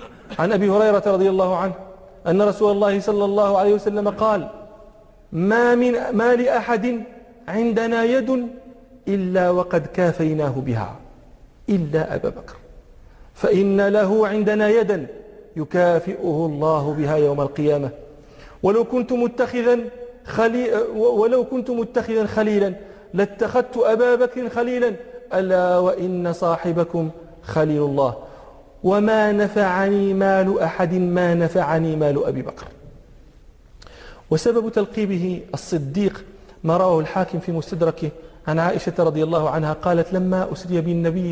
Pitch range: 165-230 Hz